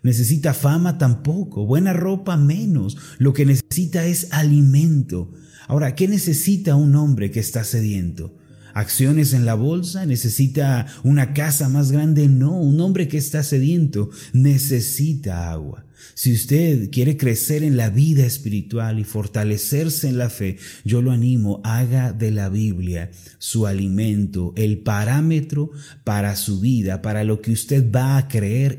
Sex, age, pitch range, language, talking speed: male, 30-49, 105-140 Hz, Spanish, 145 wpm